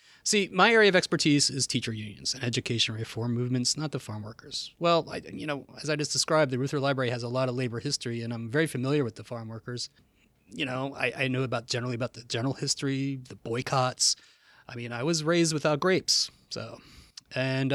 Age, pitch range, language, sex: 30-49, 120-160 Hz, English, male